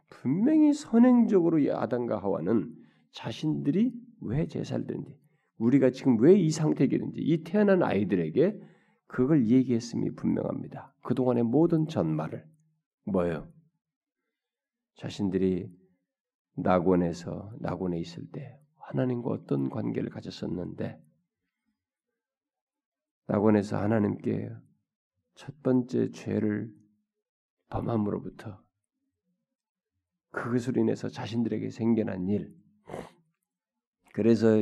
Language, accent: Korean, native